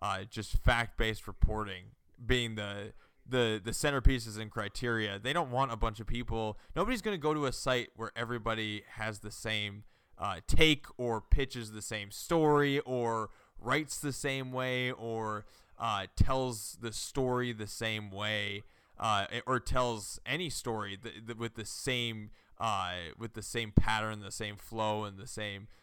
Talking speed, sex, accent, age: 160 wpm, male, American, 20-39